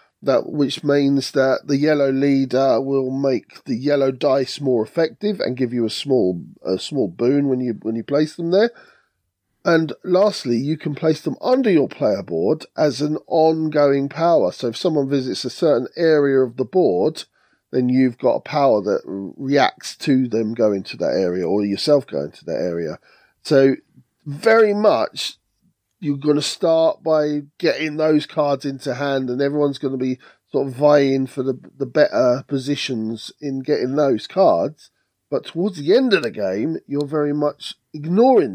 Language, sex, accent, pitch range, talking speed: English, male, British, 130-155 Hz, 175 wpm